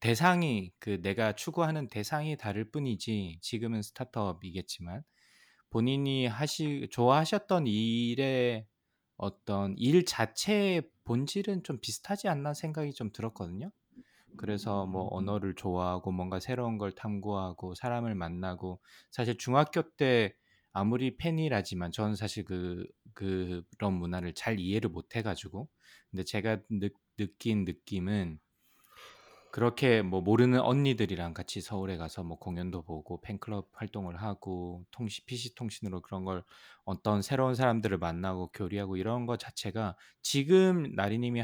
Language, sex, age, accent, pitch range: Korean, male, 20-39, native, 95-130 Hz